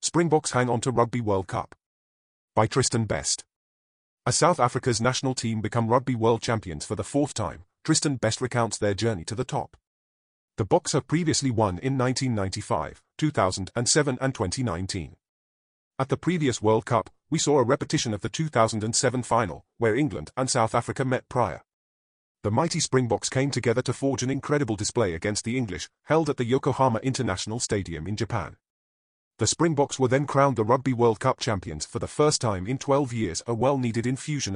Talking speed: 175 wpm